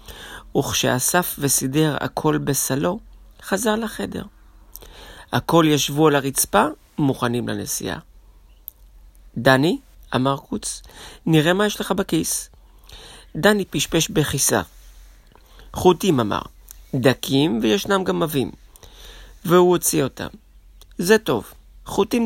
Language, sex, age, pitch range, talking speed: Hebrew, male, 40-59, 105-170 Hz, 95 wpm